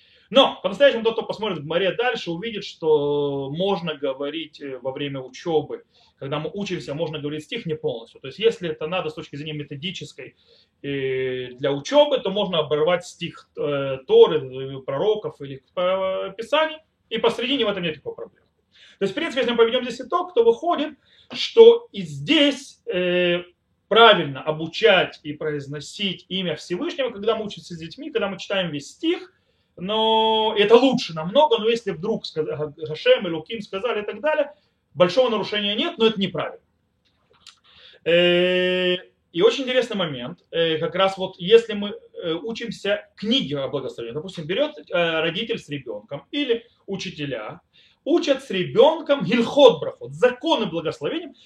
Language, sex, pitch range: Russian, male, 155-245 Hz